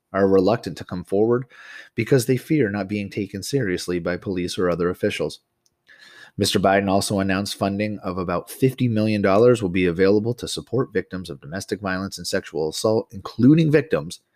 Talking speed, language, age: 165 wpm, English, 30-49